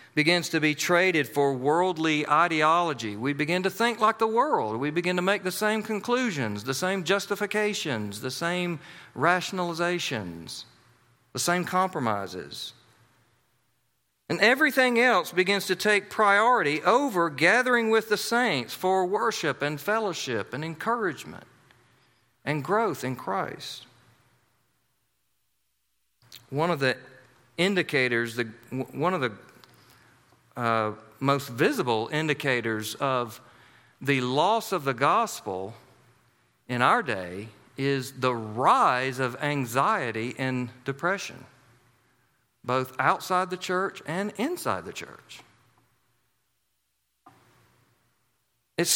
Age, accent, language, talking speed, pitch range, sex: 50-69, American, English, 110 wpm, 120-185 Hz, male